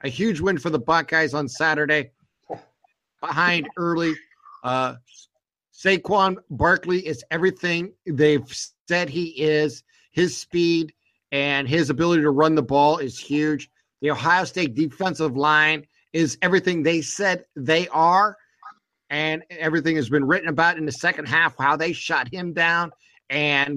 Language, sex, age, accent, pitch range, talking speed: English, male, 50-69, American, 140-165 Hz, 145 wpm